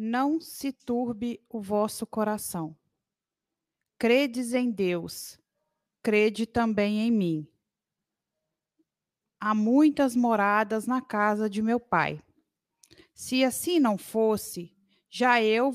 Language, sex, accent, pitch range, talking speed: Portuguese, female, Brazilian, 200-255 Hz, 105 wpm